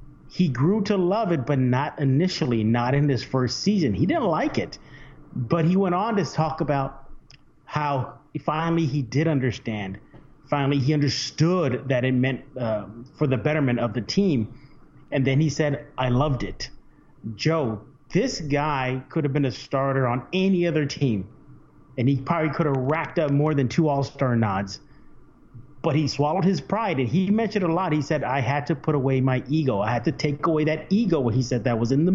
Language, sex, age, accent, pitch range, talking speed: English, male, 40-59, American, 135-160 Hz, 200 wpm